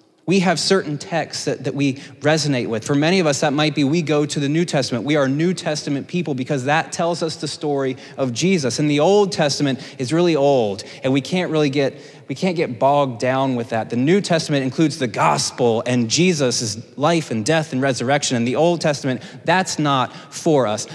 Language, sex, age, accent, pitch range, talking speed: English, male, 20-39, American, 125-155 Hz, 215 wpm